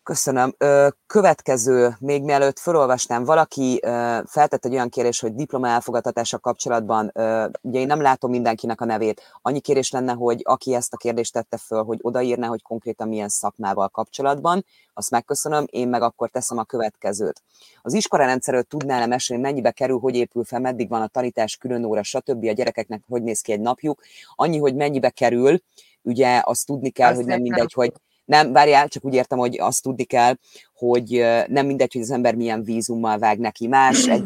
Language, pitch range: Hungarian, 110-130 Hz